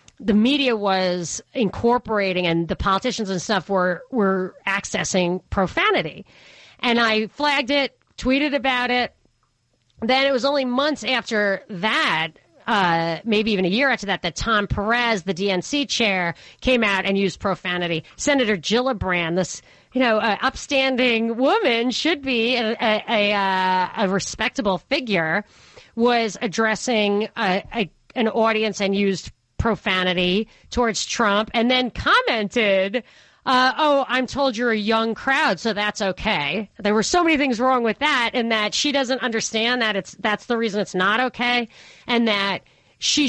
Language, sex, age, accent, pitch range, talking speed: English, female, 40-59, American, 195-245 Hz, 155 wpm